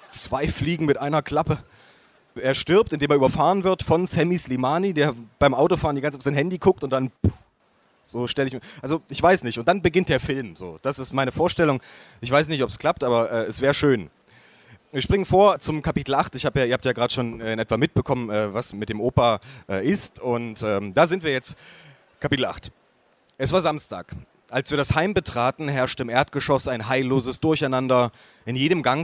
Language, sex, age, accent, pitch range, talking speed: German, male, 30-49, German, 120-150 Hz, 205 wpm